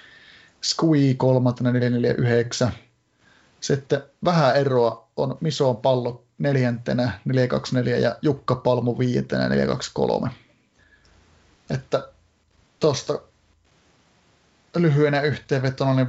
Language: Finnish